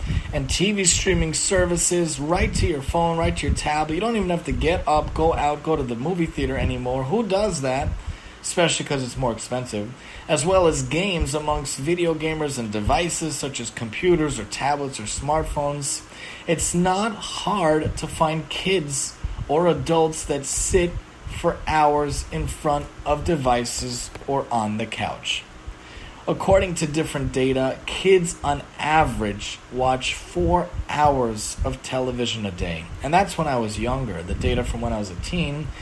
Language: English